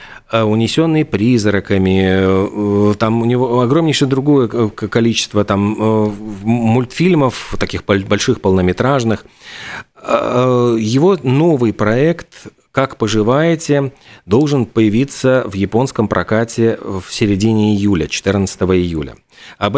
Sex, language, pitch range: male, Russian, 100-135 Hz